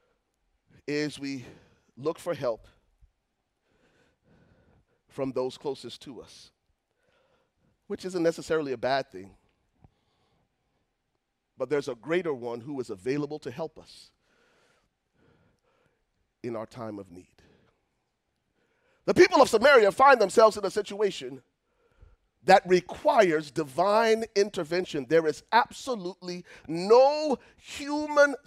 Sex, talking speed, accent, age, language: male, 105 wpm, American, 40-59, English